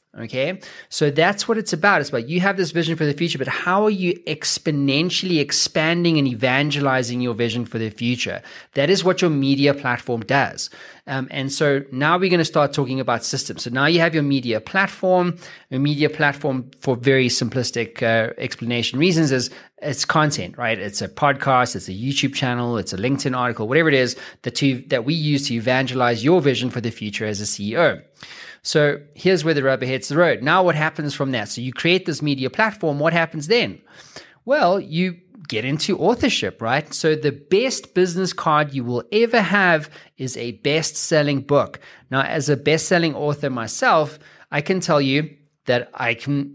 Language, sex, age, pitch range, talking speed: English, male, 20-39, 130-165 Hz, 190 wpm